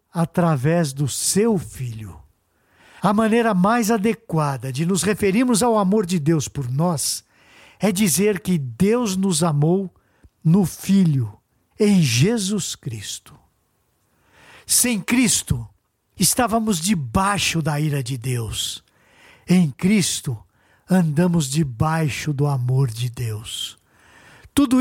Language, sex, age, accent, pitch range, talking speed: Portuguese, male, 60-79, Brazilian, 135-200 Hz, 110 wpm